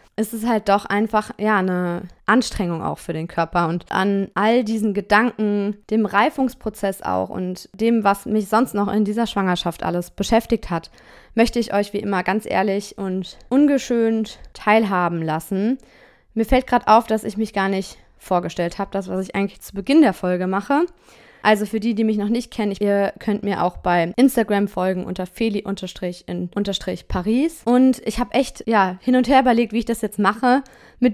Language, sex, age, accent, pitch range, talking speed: German, female, 20-39, German, 190-225 Hz, 185 wpm